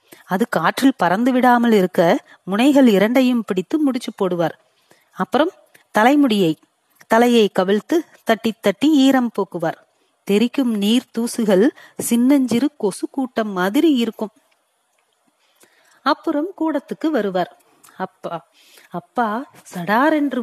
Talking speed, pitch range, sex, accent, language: 95 wpm, 200-285 Hz, female, native, Tamil